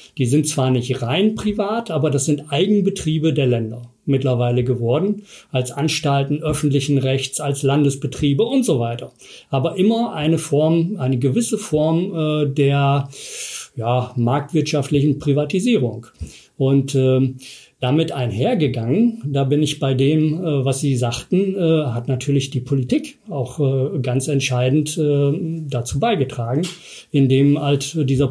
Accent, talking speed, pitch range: German, 120 wpm, 130-160 Hz